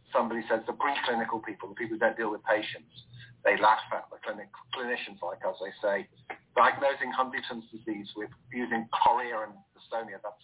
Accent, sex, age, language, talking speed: British, male, 50-69, English, 180 wpm